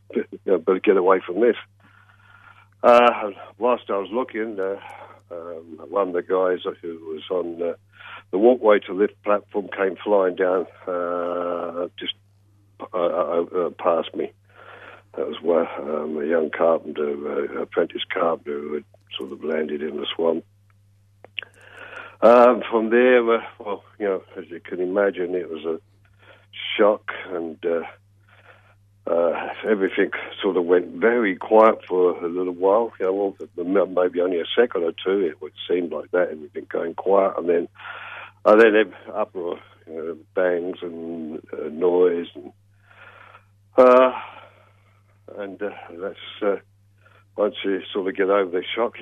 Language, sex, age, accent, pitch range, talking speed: English, male, 60-79, British, 90-110 Hz, 150 wpm